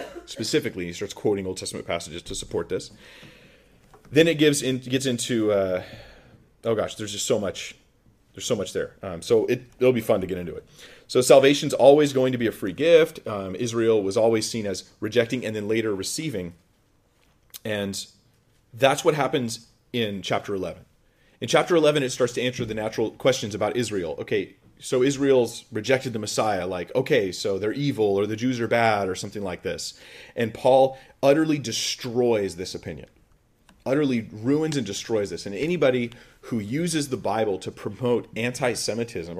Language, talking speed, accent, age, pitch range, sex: English, 175 wpm, American, 30-49, 105-130 Hz, male